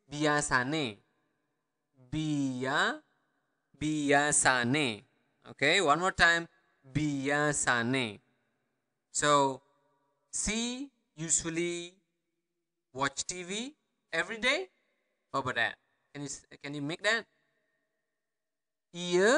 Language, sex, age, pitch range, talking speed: English, male, 20-39, 140-195 Hz, 75 wpm